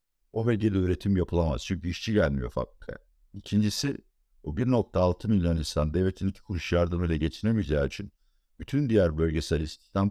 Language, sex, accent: Turkish, male, native